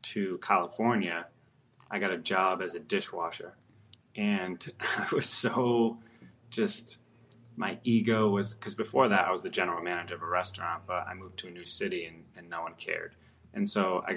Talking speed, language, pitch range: 180 wpm, English, 90-115 Hz